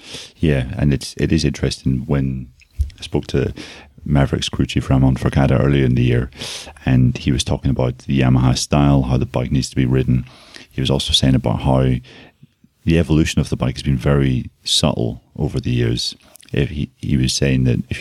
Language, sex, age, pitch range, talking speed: English, male, 30-49, 65-75 Hz, 195 wpm